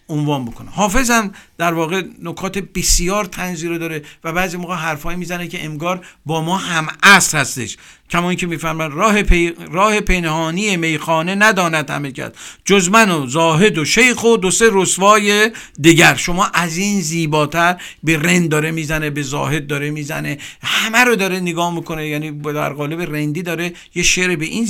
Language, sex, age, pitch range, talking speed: Persian, male, 50-69, 150-190 Hz, 165 wpm